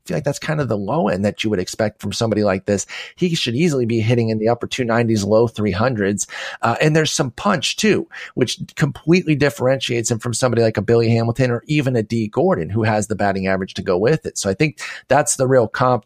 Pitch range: 110-130 Hz